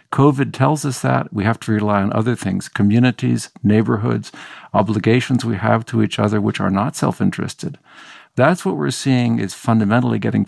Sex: male